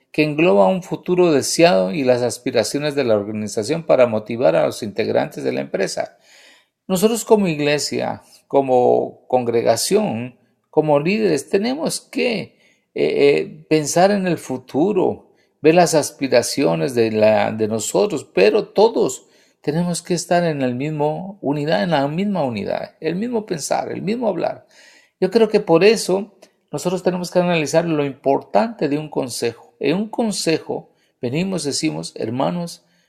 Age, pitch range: 50-69, 125-175 Hz